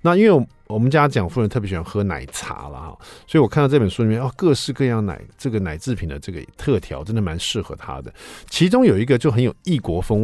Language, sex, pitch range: Chinese, male, 95-145 Hz